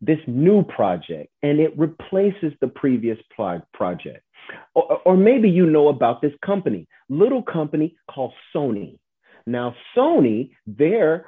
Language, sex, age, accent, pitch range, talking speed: English, male, 40-59, American, 110-155 Hz, 130 wpm